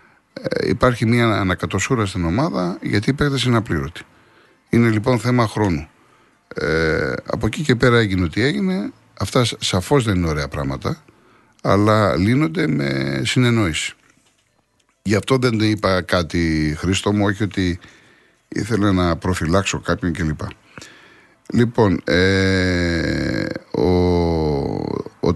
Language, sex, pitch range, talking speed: Greek, male, 85-115 Hz, 120 wpm